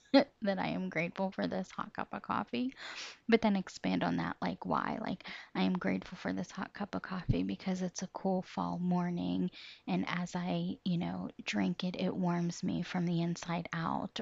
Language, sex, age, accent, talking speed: English, female, 20-39, American, 200 wpm